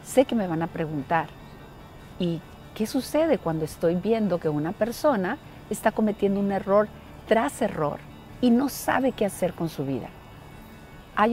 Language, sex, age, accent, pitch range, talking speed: Spanish, female, 40-59, Mexican, 145-200 Hz, 160 wpm